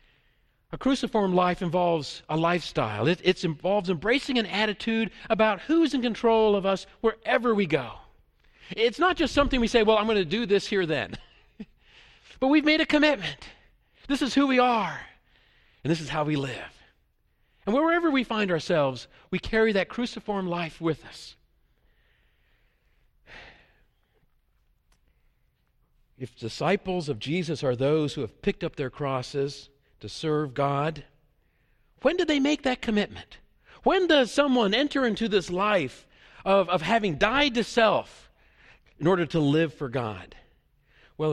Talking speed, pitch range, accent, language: 150 wpm, 140-220 Hz, American, English